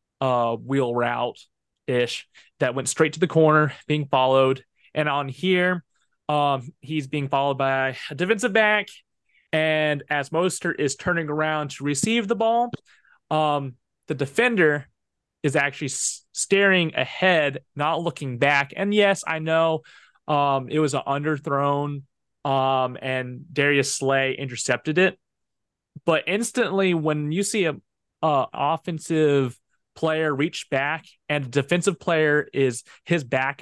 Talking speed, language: 135 wpm, English